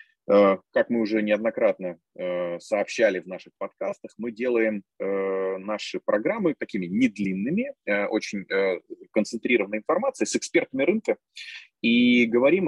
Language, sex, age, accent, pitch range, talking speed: Russian, male, 20-39, native, 95-160 Hz, 105 wpm